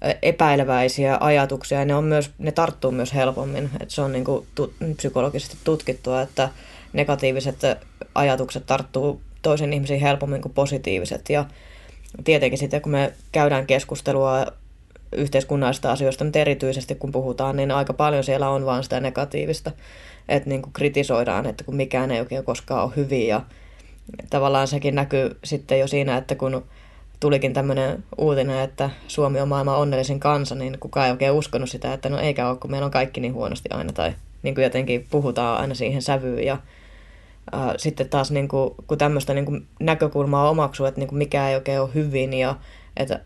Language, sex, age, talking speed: Finnish, female, 20-39, 165 wpm